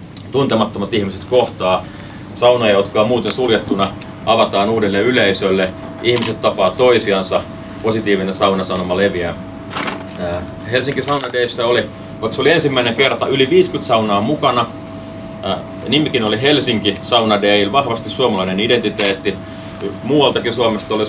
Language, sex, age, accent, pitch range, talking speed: Finnish, male, 30-49, native, 95-115 Hz, 105 wpm